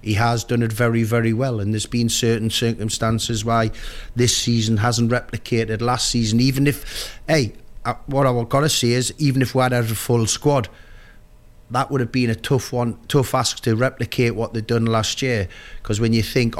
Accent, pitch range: British, 105-125 Hz